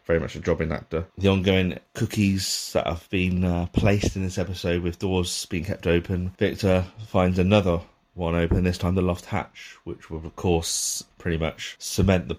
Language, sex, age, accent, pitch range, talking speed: English, male, 30-49, British, 85-100 Hz, 195 wpm